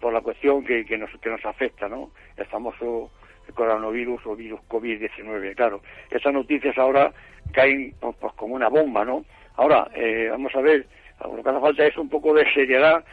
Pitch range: 135-165 Hz